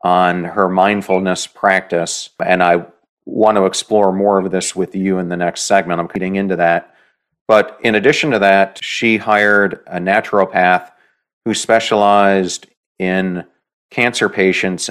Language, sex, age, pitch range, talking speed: English, male, 40-59, 90-100 Hz, 145 wpm